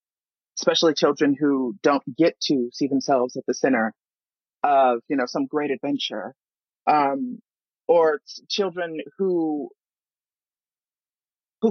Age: 30-49